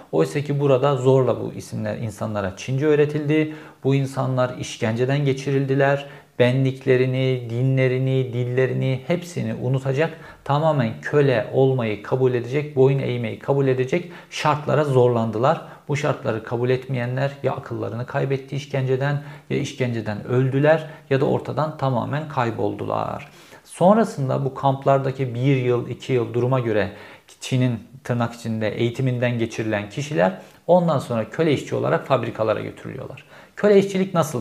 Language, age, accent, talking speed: Turkish, 50-69, native, 120 wpm